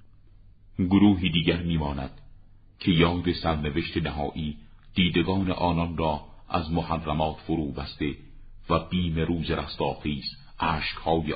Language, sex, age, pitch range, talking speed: Persian, male, 50-69, 80-95 Hz, 105 wpm